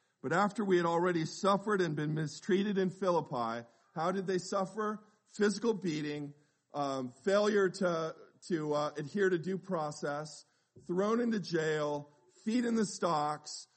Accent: American